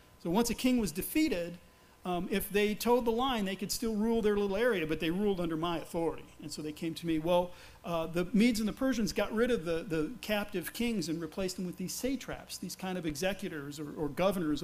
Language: English